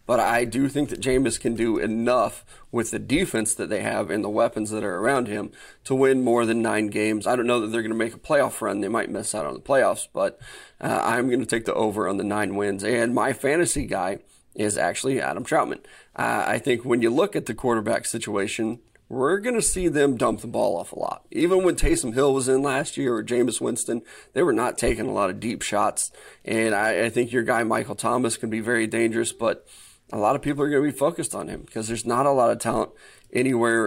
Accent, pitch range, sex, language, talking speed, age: American, 110-135 Hz, male, English, 245 wpm, 30-49